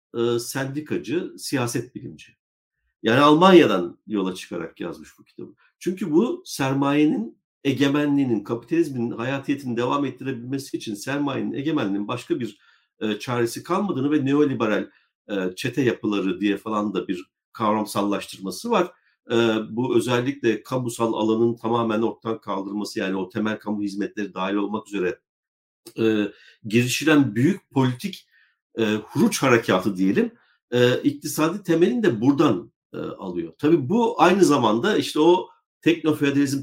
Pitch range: 110-175 Hz